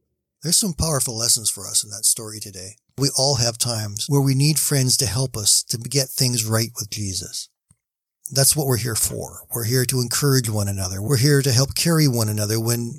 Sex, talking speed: male, 210 wpm